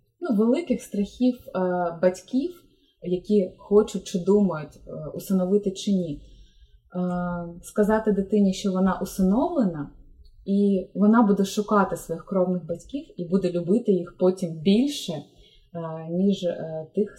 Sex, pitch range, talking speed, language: female, 175-210 Hz, 105 wpm, Ukrainian